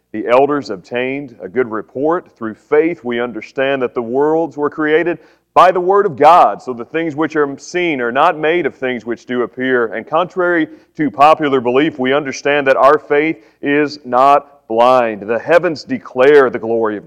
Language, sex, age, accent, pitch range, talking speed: English, male, 40-59, American, 110-150 Hz, 185 wpm